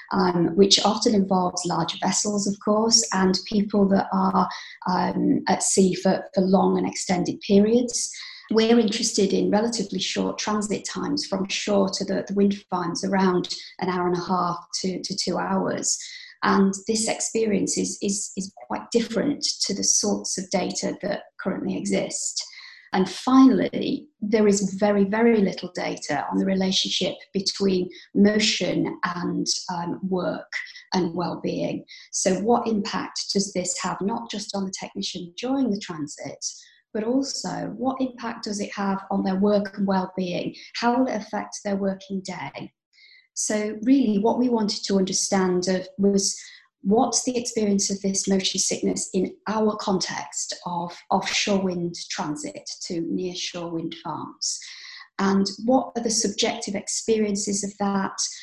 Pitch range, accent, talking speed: 185-230 Hz, British, 150 wpm